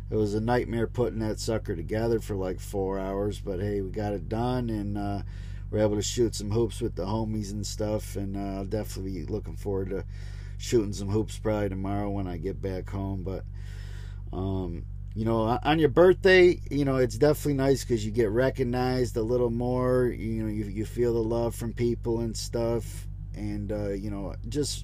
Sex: male